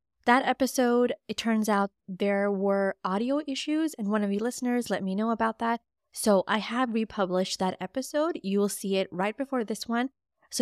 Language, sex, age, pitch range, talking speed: English, female, 20-39, 195-255 Hz, 190 wpm